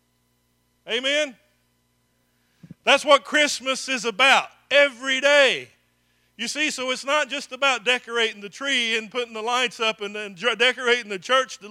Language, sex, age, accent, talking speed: English, male, 40-59, American, 145 wpm